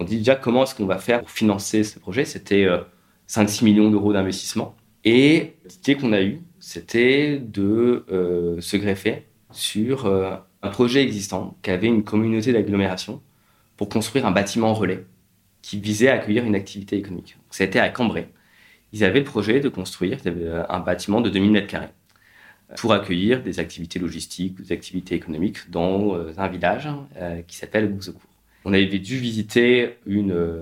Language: French